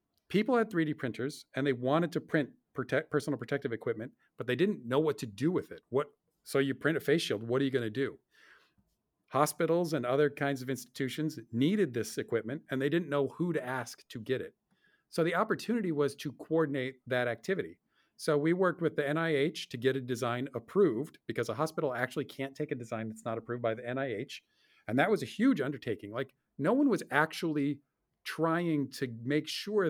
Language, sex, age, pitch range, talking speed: English, male, 50-69, 130-165 Hz, 205 wpm